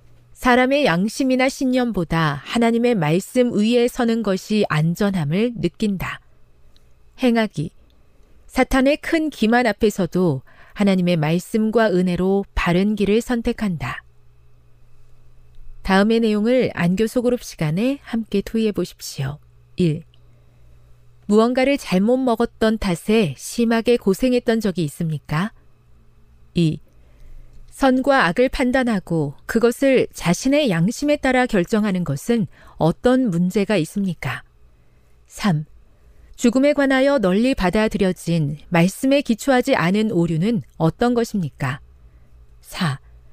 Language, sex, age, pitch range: Korean, female, 40-59, 145-240 Hz